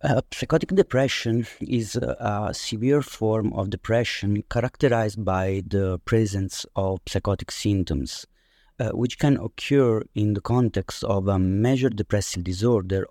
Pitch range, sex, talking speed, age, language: 90-115 Hz, male, 135 wpm, 30-49, English